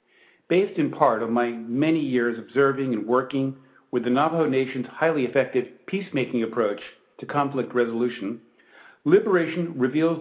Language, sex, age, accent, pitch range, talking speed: English, male, 50-69, American, 130-175 Hz, 135 wpm